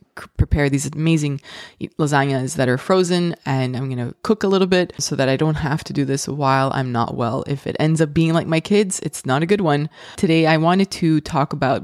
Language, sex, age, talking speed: English, female, 20-39, 235 wpm